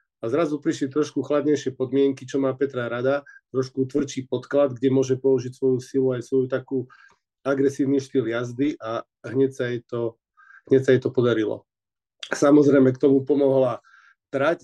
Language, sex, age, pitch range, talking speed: Slovak, male, 40-59, 130-150 Hz, 155 wpm